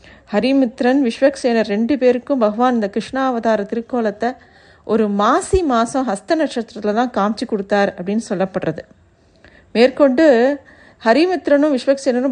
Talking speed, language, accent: 100 wpm, Tamil, native